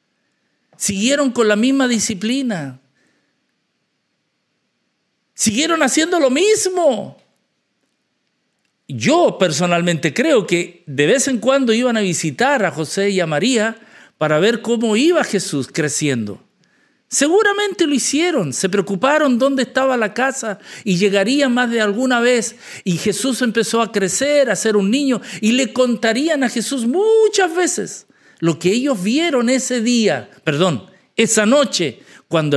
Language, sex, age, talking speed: English, male, 50-69, 135 wpm